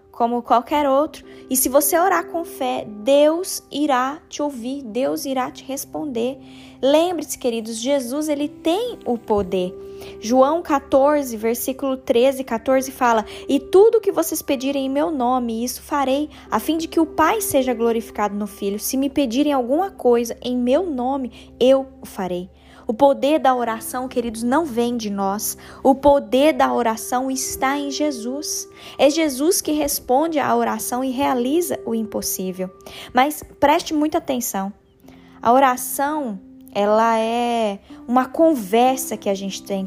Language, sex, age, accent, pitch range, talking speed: Portuguese, female, 10-29, Brazilian, 230-290 Hz, 150 wpm